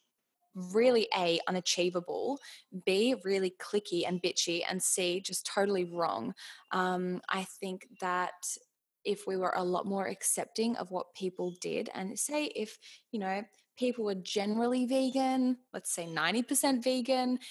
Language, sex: English, female